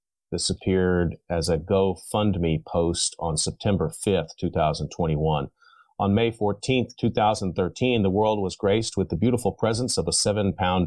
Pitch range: 95-110 Hz